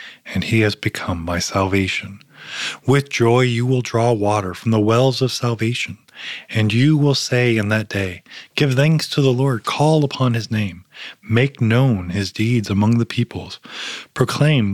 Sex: male